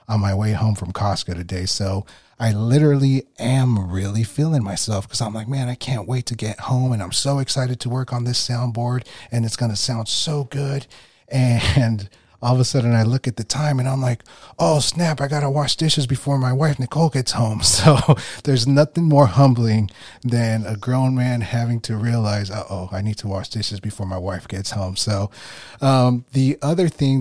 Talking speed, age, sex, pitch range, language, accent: 205 wpm, 30-49, male, 100-125 Hz, English, American